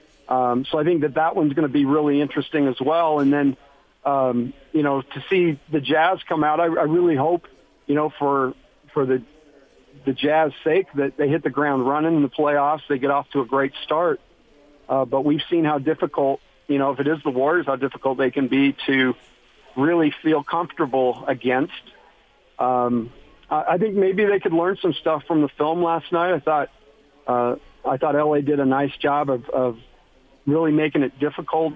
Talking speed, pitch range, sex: 200 wpm, 135-155 Hz, male